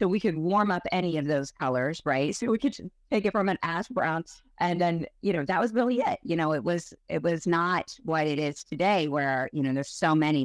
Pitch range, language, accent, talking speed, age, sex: 155-200 Hz, English, American, 255 wpm, 30-49, female